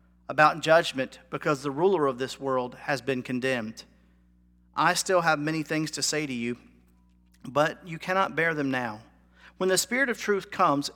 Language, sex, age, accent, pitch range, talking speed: English, male, 40-59, American, 130-170 Hz, 175 wpm